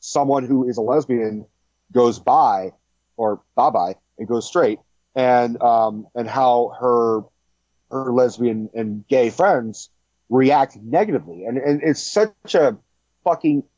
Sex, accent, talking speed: male, American, 135 wpm